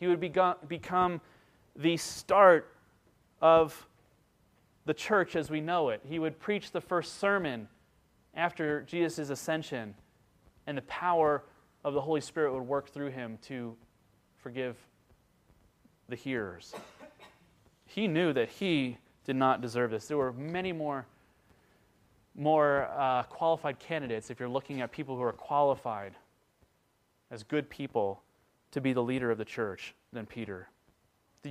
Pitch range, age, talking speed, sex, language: 120-150 Hz, 30-49, 140 wpm, male, English